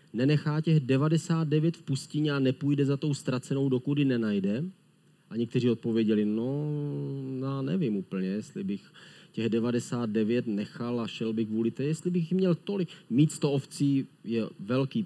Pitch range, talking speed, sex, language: 125-155 Hz, 150 wpm, male, Czech